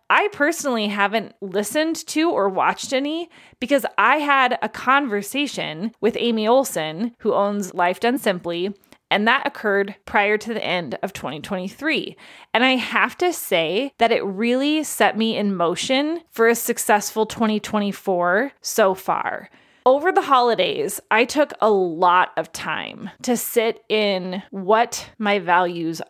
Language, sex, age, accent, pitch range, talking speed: English, female, 20-39, American, 195-245 Hz, 145 wpm